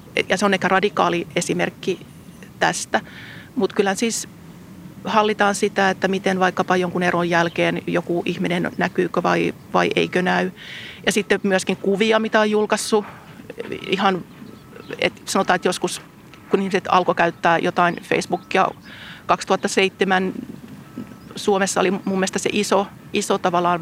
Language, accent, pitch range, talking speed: Finnish, native, 180-205 Hz, 130 wpm